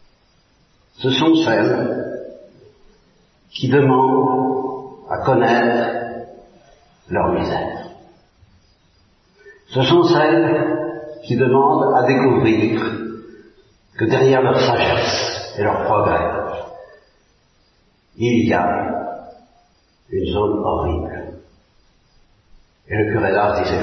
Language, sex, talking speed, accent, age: Italian, male, 90 wpm, French, 50-69